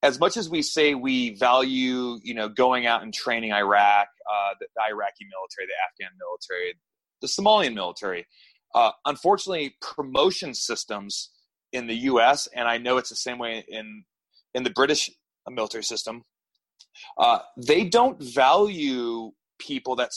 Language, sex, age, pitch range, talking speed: English, male, 30-49, 120-195 Hz, 150 wpm